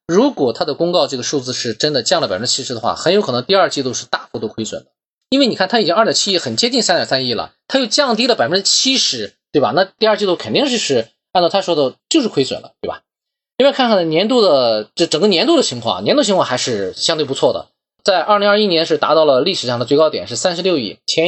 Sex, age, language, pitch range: male, 20-39, Chinese, 135-210 Hz